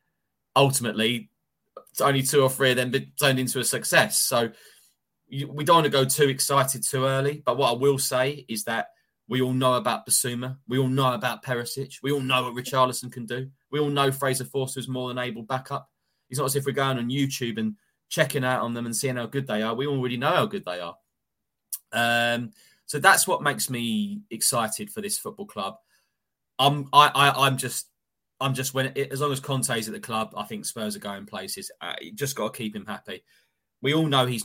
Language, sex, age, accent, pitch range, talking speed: English, male, 20-39, British, 120-140 Hz, 220 wpm